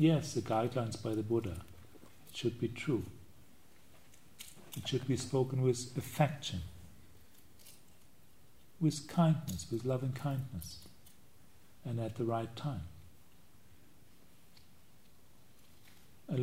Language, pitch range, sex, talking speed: English, 100-145 Hz, male, 95 wpm